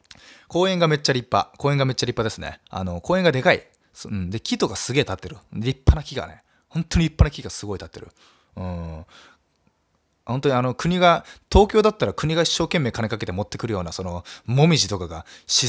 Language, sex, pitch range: Japanese, male, 100-165 Hz